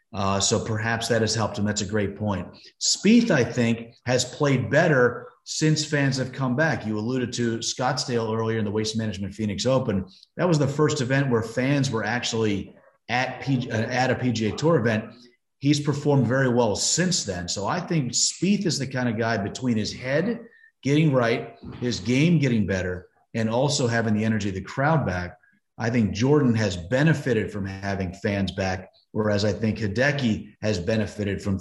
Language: English